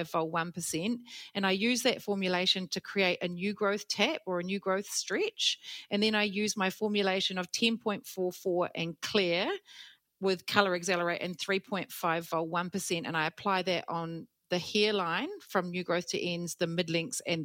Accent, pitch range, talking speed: Australian, 165-195 Hz, 165 wpm